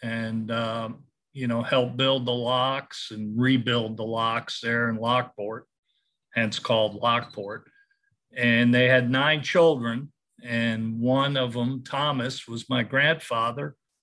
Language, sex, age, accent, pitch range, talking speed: English, male, 50-69, American, 120-140 Hz, 135 wpm